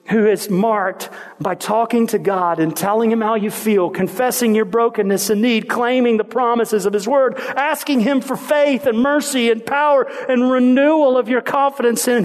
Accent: American